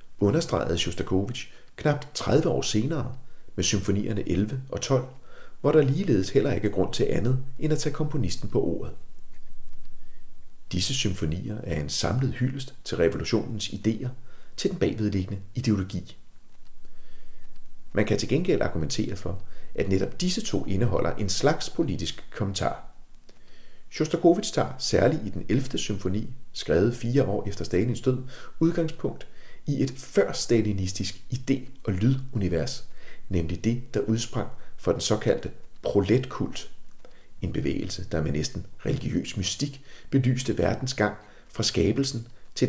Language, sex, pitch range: Danish, male, 95-130 Hz